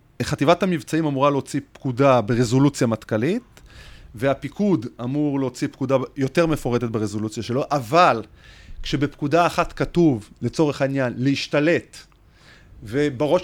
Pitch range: 125-155 Hz